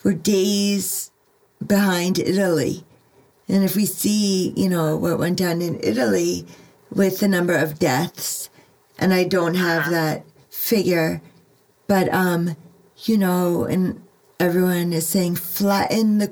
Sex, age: female, 40-59